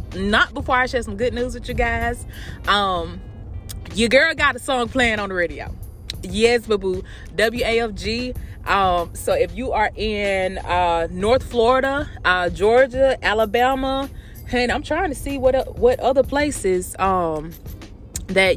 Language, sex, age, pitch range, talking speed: English, female, 20-39, 175-265 Hz, 150 wpm